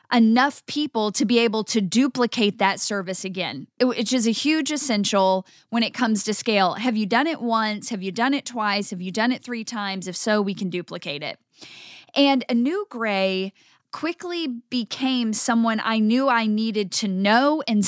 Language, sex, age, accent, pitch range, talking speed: English, female, 10-29, American, 205-255 Hz, 190 wpm